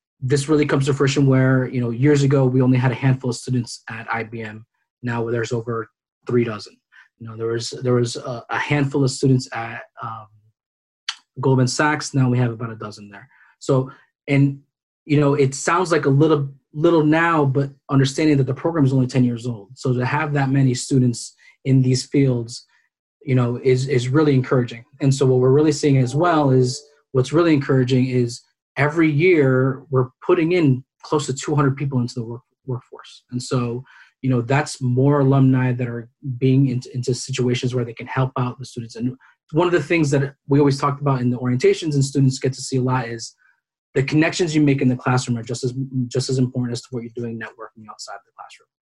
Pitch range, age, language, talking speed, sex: 125-140 Hz, 20-39, English, 210 wpm, male